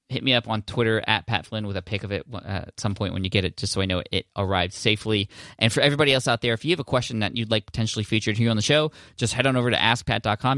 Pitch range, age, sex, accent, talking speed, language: 100-120 Hz, 20-39, male, American, 305 wpm, English